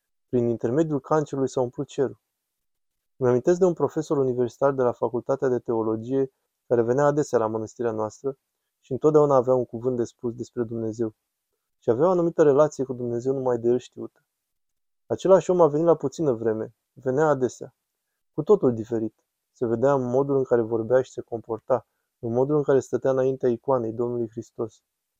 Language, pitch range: Romanian, 120-140 Hz